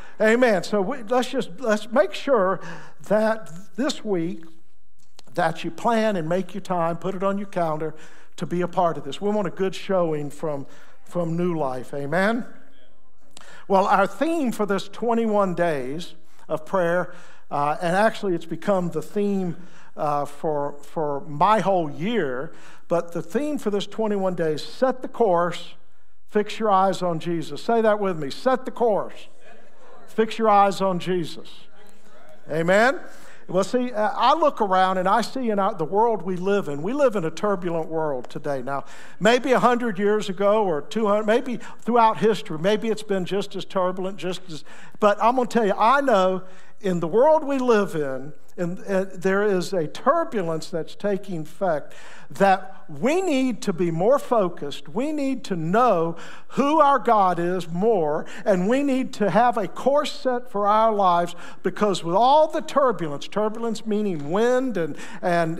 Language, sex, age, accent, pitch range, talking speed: English, male, 50-69, American, 170-225 Hz, 170 wpm